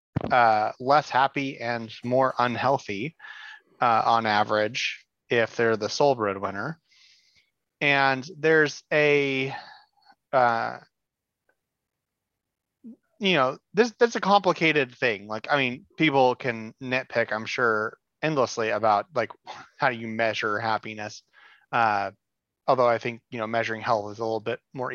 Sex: male